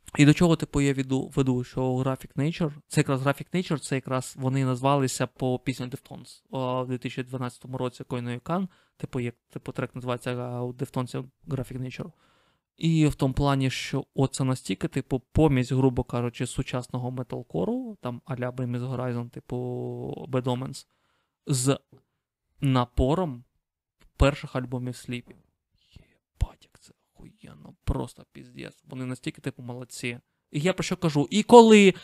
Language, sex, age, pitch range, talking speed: Ukrainian, male, 20-39, 130-175 Hz, 140 wpm